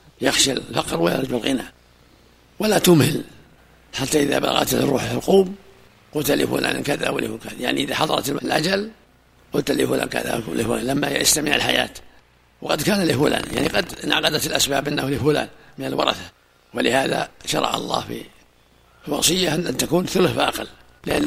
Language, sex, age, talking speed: Arabic, male, 60-79, 135 wpm